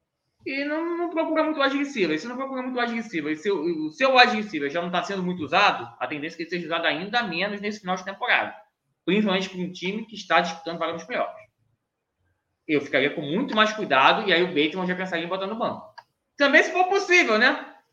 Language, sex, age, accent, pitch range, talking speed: Portuguese, male, 20-39, Brazilian, 170-245 Hz, 230 wpm